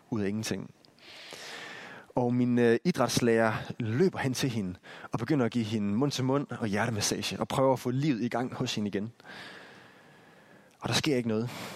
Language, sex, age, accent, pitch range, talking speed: Danish, male, 30-49, native, 110-150 Hz, 185 wpm